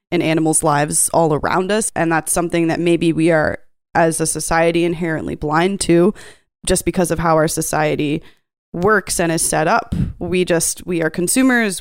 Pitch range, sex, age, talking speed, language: 160-175 Hz, female, 20-39, 180 wpm, English